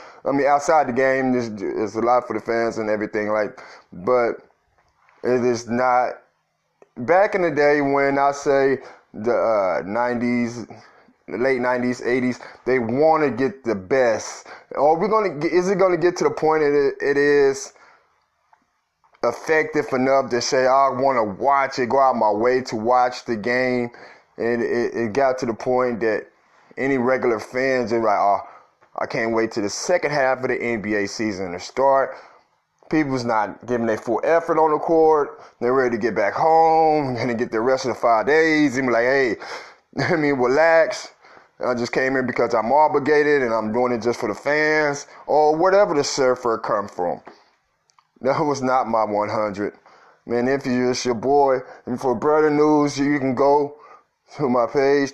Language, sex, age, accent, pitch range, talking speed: English, male, 20-39, American, 120-150 Hz, 185 wpm